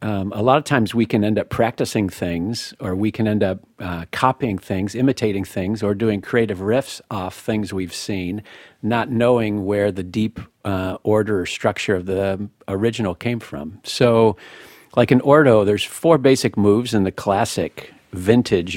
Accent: American